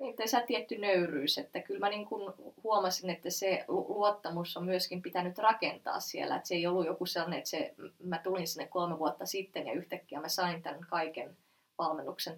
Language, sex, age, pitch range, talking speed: Finnish, female, 20-39, 170-190 Hz, 165 wpm